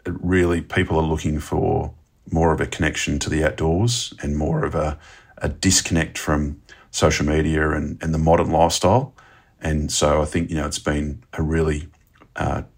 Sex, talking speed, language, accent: male, 175 wpm, English, Australian